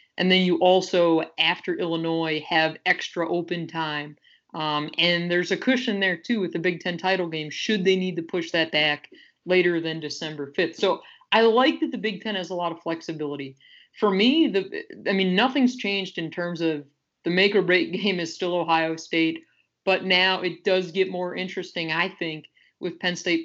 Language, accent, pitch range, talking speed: English, American, 160-195 Hz, 190 wpm